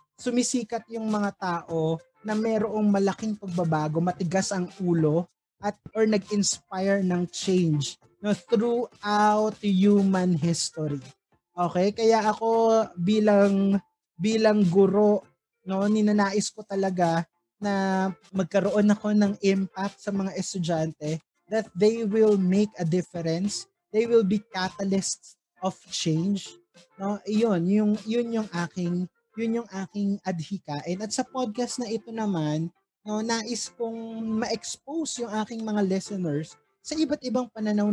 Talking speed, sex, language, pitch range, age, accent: 125 wpm, male, Filipino, 180-220 Hz, 20-39, native